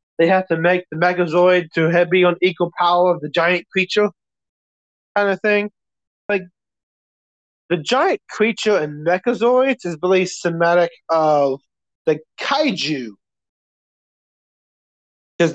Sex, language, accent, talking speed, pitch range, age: male, English, American, 120 wpm, 150-190 Hz, 30-49